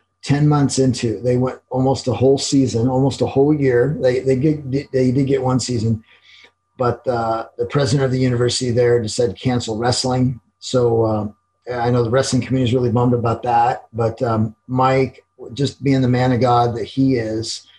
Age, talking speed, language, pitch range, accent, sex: 40-59, 190 wpm, English, 115-130 Hz, American, male